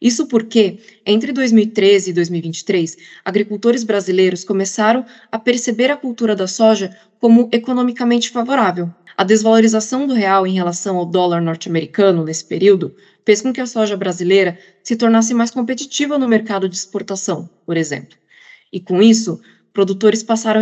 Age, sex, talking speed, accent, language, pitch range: 20-39, female, 145 wpm, Brazilian, English, 190-245 Hz